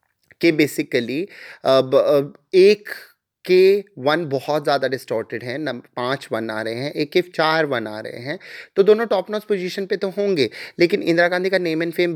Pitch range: 130-175 Hz